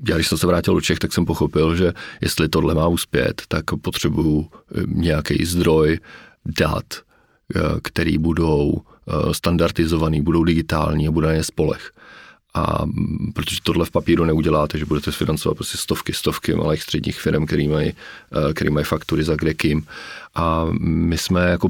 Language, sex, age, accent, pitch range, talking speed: Czech, male, 40-59, native, 80-85 Hz, 150 wpm